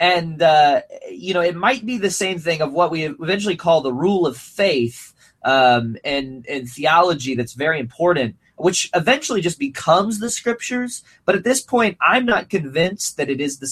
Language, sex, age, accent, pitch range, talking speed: English, male, 20-39, American, 130-180 Hz, 190 wpm